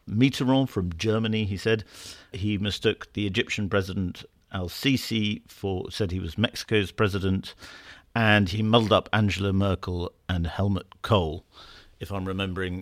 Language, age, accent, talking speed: English, 50-69, British, 135 wpm